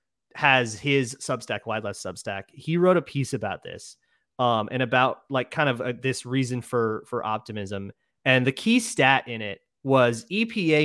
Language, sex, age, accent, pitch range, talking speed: English, male, 30-49, American, 115-150 Hz, 175 wpm